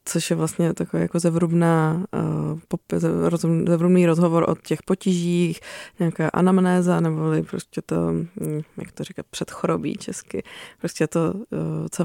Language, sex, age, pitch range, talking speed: Czech, female, 20-39, 155-180 Hz, 120 wpm